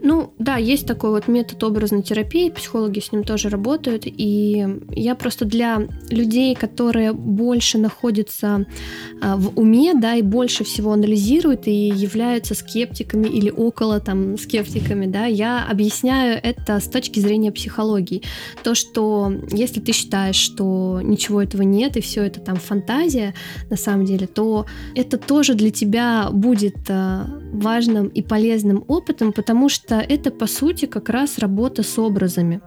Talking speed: 145 wpm